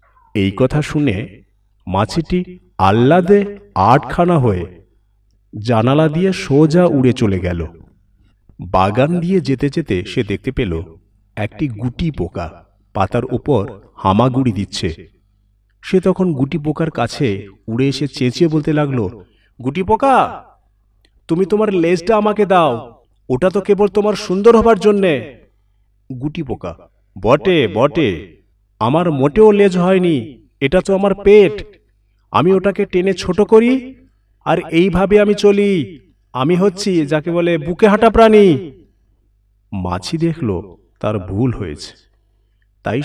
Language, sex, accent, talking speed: Bengali, male, native, 120 wpm